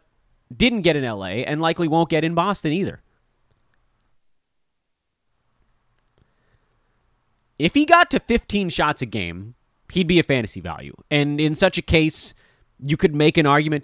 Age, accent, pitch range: 30-49, American, 115-165 Hz